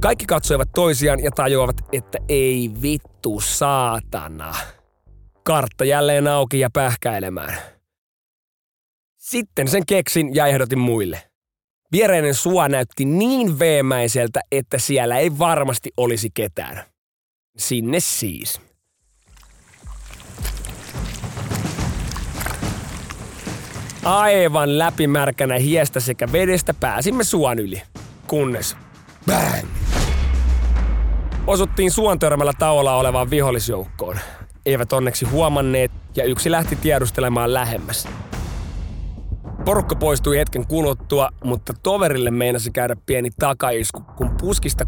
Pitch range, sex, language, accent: 105-145 Hz, male, Finnish, native